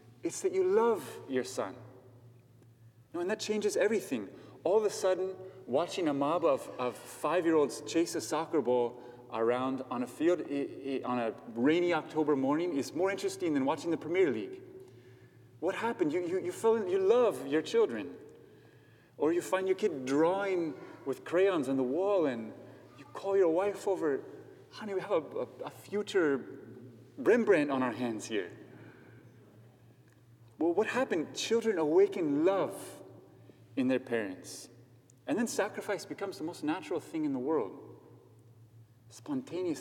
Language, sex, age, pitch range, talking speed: English, male, 30-49, 120-200 Hz, 160 wpm